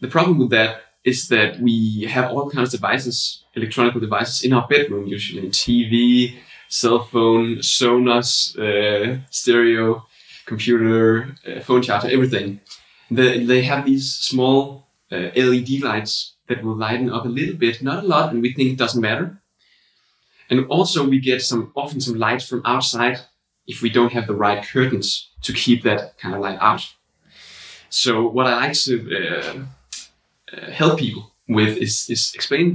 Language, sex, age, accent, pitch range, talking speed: English, male, 20-39, Danish, 115-130 Hz, 165 wpm